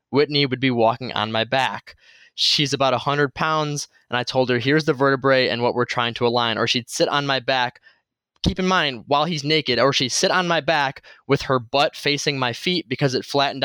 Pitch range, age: 120-145 Hz, 20-39